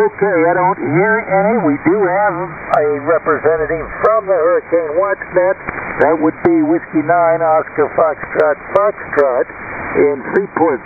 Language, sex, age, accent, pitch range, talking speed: English, male, 60-79, American, 150-195 Hz, 140 wpm